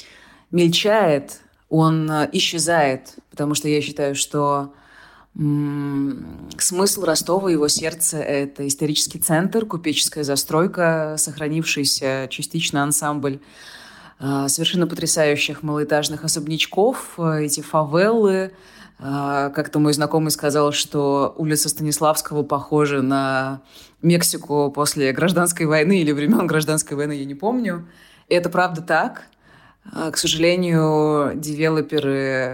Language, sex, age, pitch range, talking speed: Russian, female, 20-39, 140-165 Hz, 105 wpm